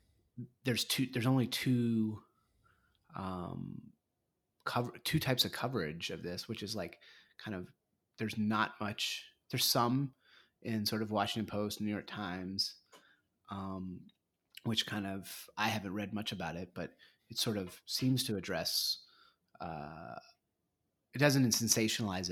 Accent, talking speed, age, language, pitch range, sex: American, 140 wpm, 30-49, English, 95-110 Hz, male